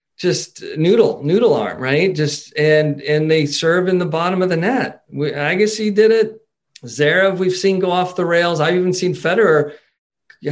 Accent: American